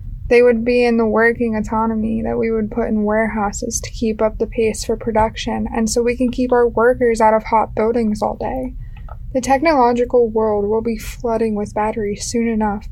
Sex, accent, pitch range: female, American, 215-245 Hz